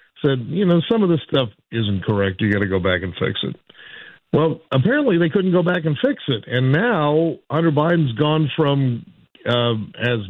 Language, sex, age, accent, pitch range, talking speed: English, male, 50-69, American, 115-160 Hz, 200 wpm